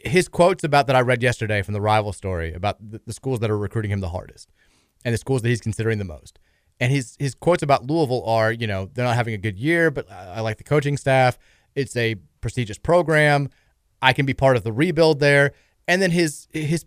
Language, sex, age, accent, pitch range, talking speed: English, male, 30-49, American, 115-155 Hz, 230 wpm